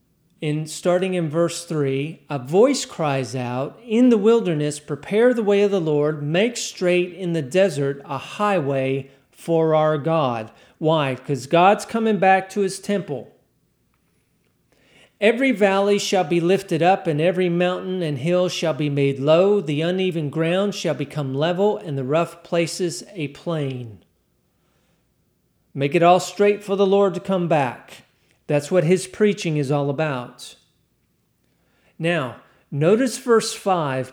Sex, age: male, 40-59